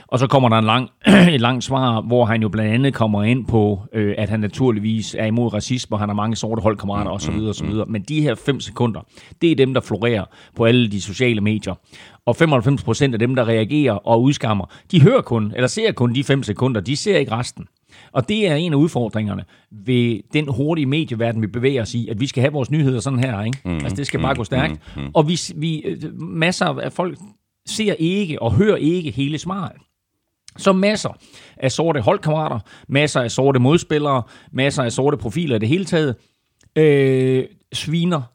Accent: native